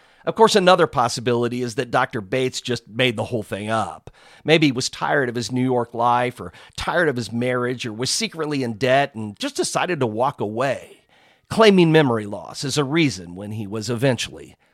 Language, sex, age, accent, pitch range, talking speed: English, male, 50-69, American, 115-155 Hz, 200 wpm